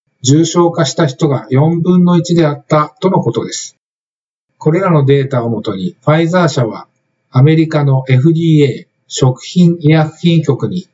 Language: Japanese